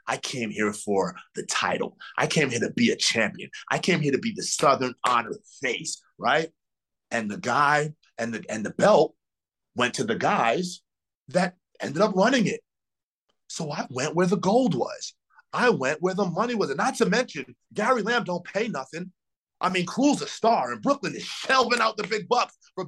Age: 30-49